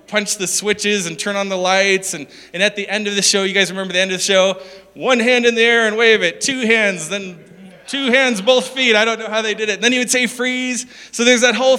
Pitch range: 185-230 Hz